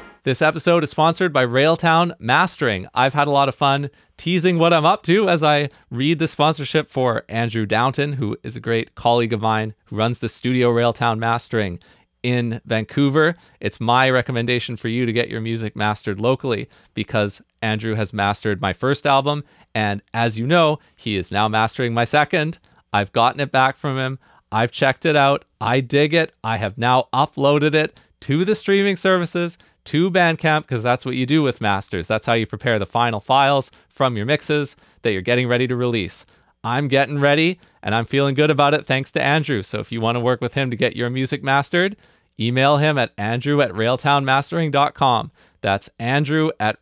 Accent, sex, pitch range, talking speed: American, male, 115-150 Hz, 190 wpm